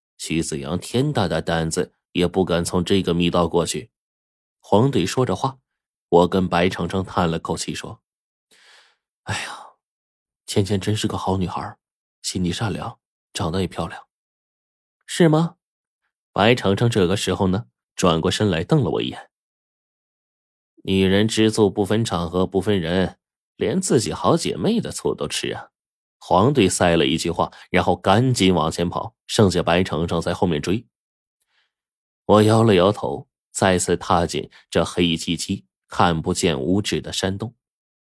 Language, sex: Chinese, male